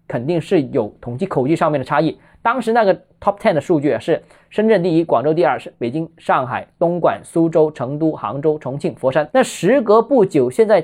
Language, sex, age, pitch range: Chinese, male, 20-39, 150-205 Hz